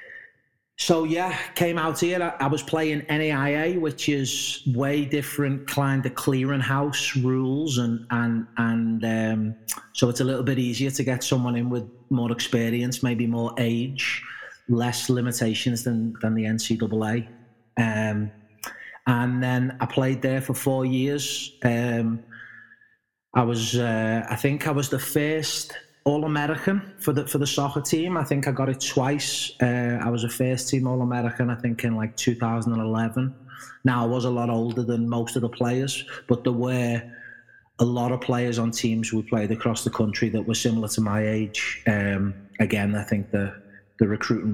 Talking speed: 170 wpm